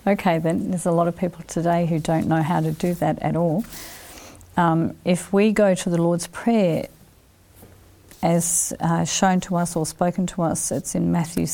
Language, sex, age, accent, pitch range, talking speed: English, female, 40-59, Australian, 170-205 Hz, 190 wpm